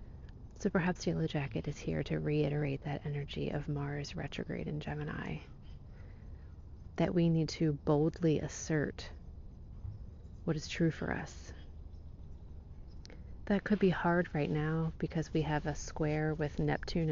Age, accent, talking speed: 30-49, American, 135 wpm